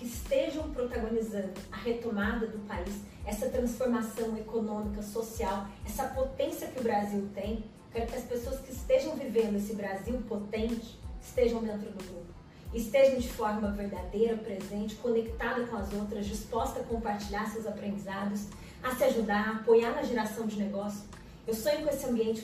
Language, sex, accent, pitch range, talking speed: Portuguese, female, Brazilian, 205-235 Hz, 160 wpm